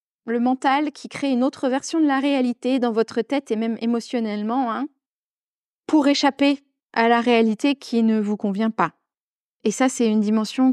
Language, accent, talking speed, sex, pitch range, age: French, French, 180 wpm, female, 215-265 Hz, 20-39